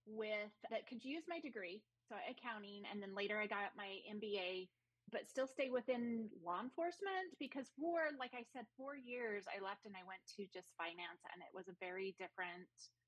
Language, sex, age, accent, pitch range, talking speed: English, female, 30-49, American, 190-255 Hz, 195 wpm